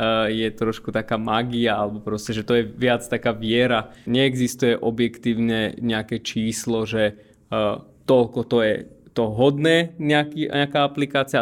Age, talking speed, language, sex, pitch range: 20-39, 130 wpm, Slovak, male, 115-135 Hz